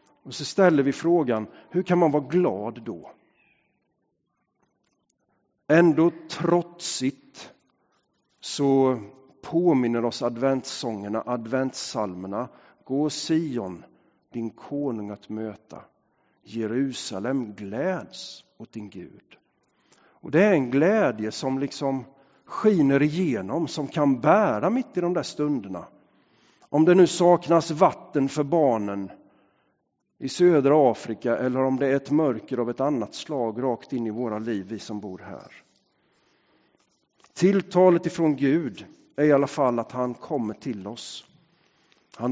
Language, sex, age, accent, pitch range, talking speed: English, male, 50-69, Swedish, 120-170 Hz, 125 wpm